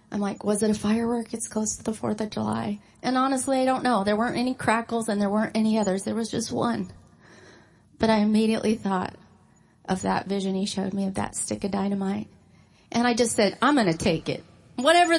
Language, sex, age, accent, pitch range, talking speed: English, female, 30-49, American, 205-240 Hz, 220 wpm